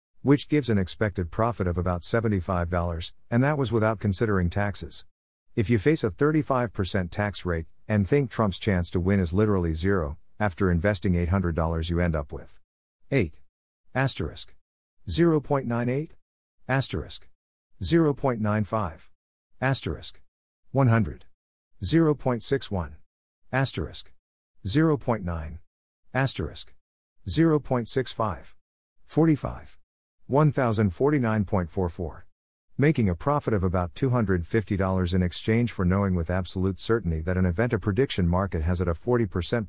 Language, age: English, 50-69